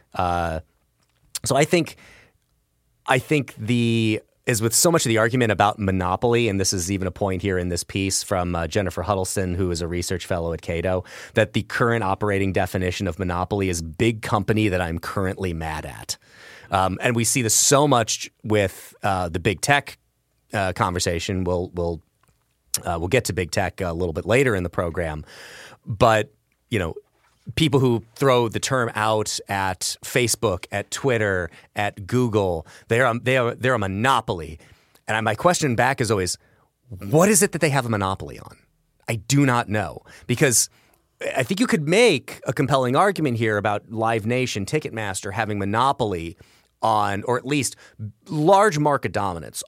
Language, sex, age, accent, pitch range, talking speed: English, male, 30-49, American, 95-125 Hz, 175 wpm